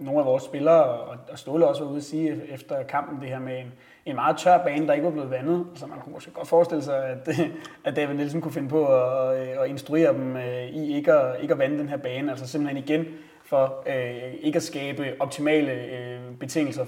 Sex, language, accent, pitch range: male, Danish, native, 130-160 Hz